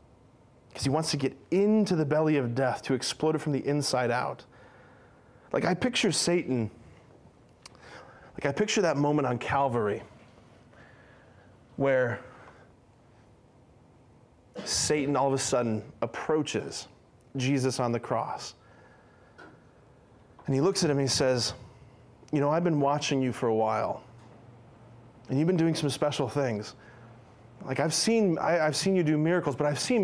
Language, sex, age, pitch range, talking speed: English, male, 30-49, 120-145 Hz, 150 wpm